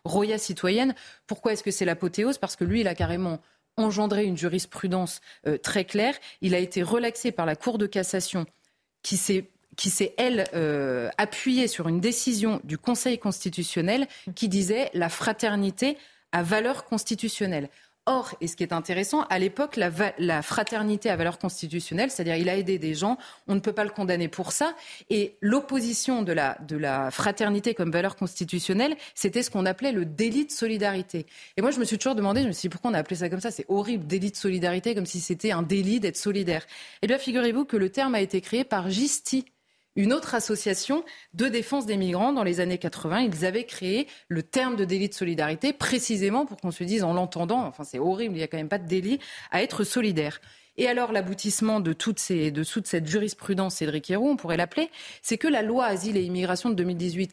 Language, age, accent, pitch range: French, 30-49, French, 180-235 Hz